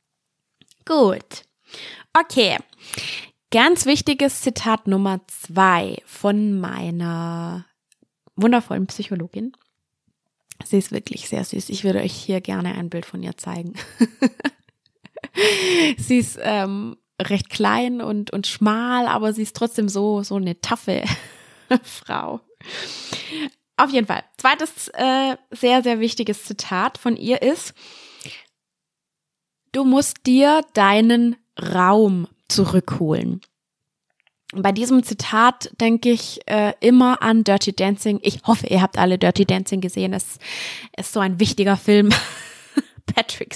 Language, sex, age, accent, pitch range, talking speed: German, female, 20-39, German, 200-255 Hz, 120 wpm